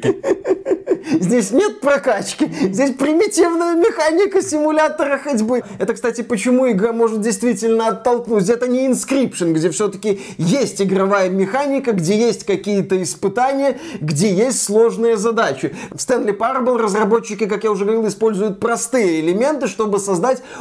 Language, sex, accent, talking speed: Russian, male, native, 130 wpm